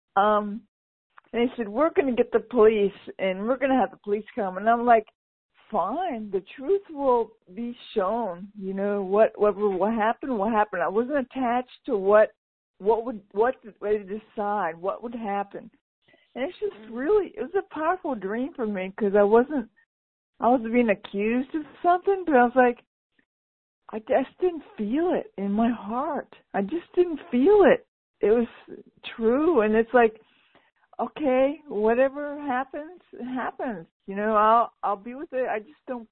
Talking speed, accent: 175 wpm, American